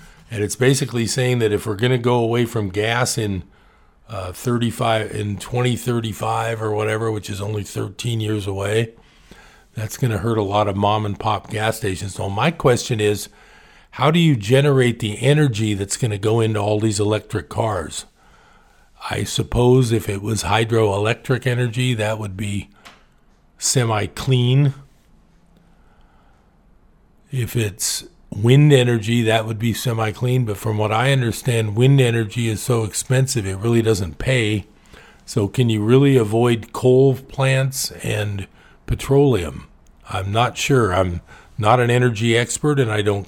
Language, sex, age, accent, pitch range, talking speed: English, male, 50-69, American, 105-125 Hz, 150 wpm